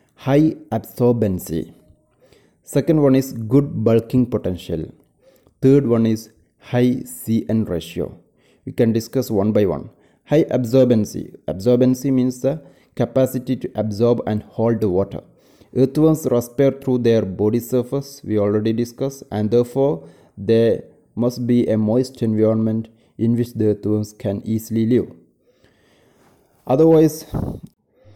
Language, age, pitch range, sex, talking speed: English, 30-49, 105-125 Hz, male, 120 wpm